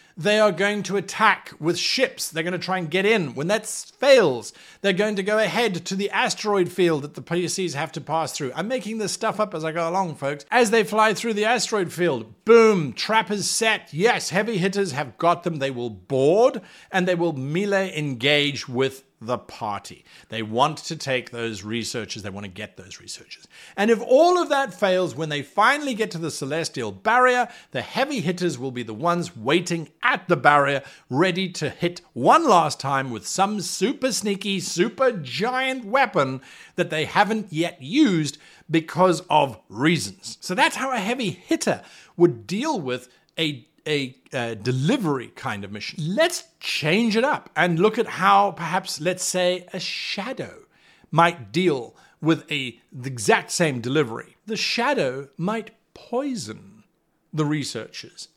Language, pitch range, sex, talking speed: English, 150-215 Hz, male, 175 wpm